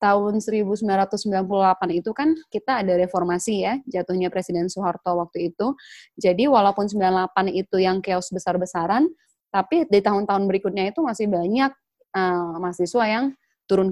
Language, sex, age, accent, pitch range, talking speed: Indonesian, female, 20-39, native, 185-235 Hz, 135 wpm